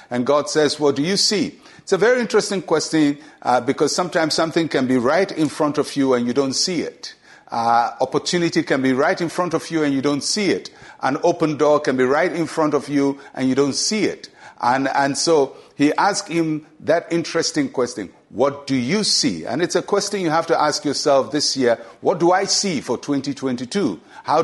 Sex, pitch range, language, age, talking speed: male, 135-170 Hz, English, 50-69, 215 wpm